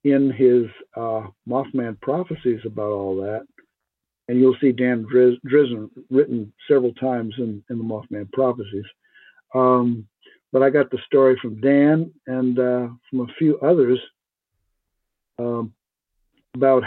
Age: 50-69